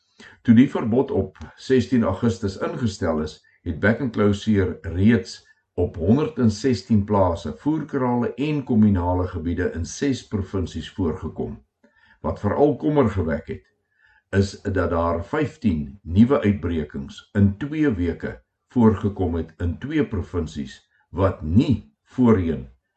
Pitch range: 85-115 Hz